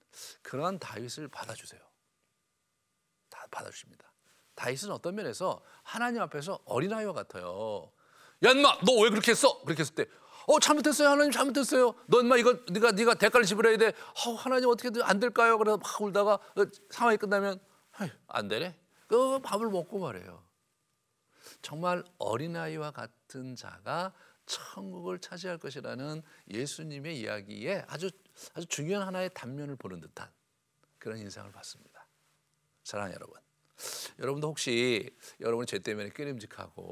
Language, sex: Korean, male